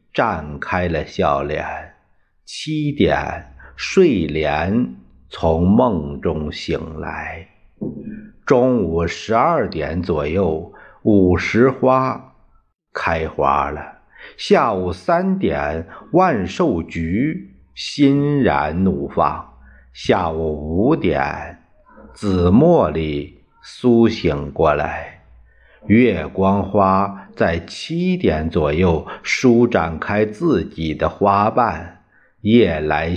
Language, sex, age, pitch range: Chinese, male, 50-69, 80-125 Hz